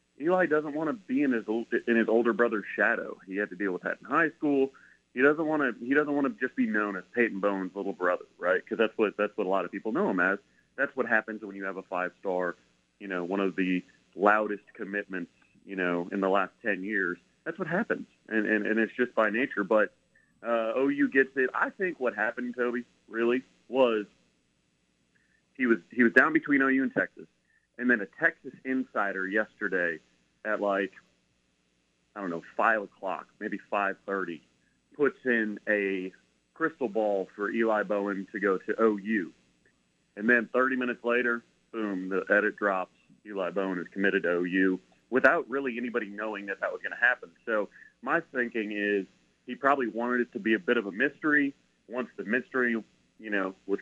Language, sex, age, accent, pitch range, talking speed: English, male, 30-49, American, 95-120 Hz, 195 wpm